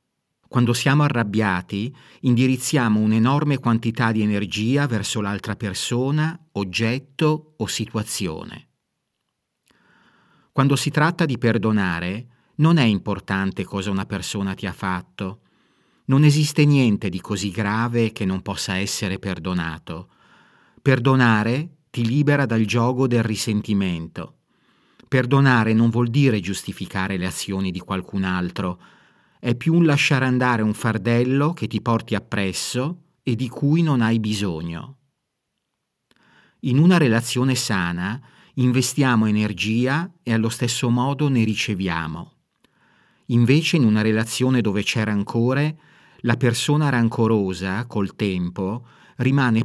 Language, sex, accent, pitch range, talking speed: Italian, male, native, 100-130 Hz, 120 wpm